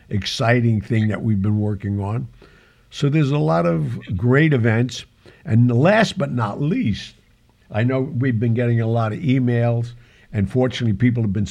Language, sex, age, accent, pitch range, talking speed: English, male, 60-79, American, 110-130 Hz, 170 wpm